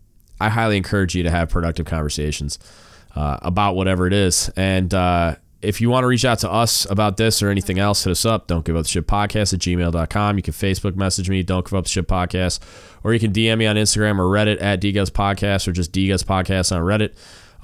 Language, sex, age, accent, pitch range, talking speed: English, male, 20-39, American, 85-105 Hz, 230 wpm